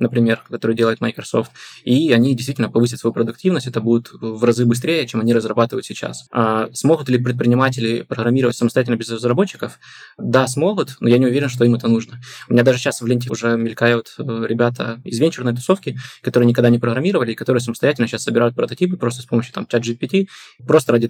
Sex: male